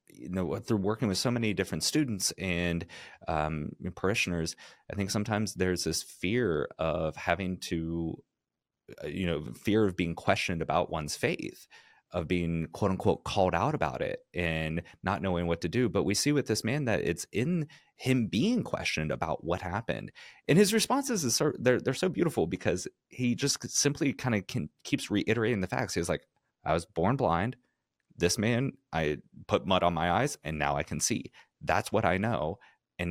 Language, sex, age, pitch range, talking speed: English, male, 30-49, 80-105 Hz, 185 wpm